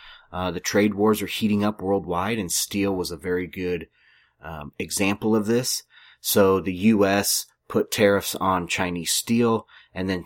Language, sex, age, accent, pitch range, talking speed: English, male, 30-49, American, 90-115 Hz, 165 wpm